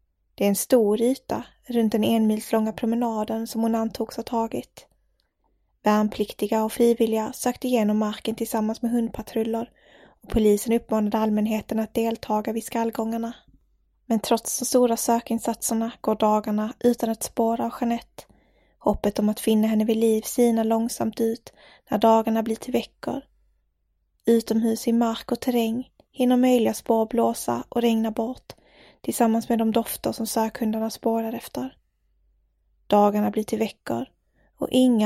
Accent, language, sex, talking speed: Swedish, English, female, 145 wpm